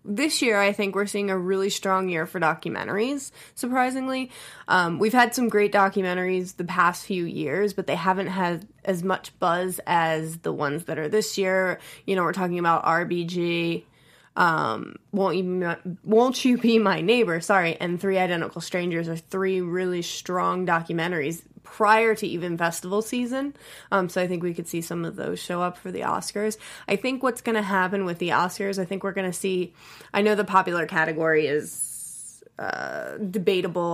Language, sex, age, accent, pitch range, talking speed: English, female, 20-39, American, 170-200 Hz, 185 wpm